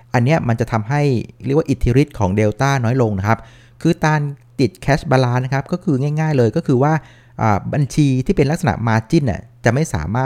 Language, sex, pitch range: Thai, male, 115-145 Hz